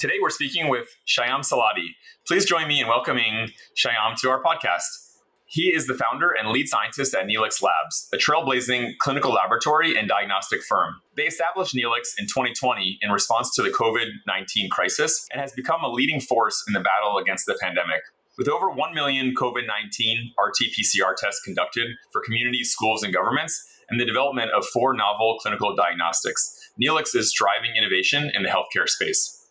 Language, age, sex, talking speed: English, 30-49, male, 170 wpm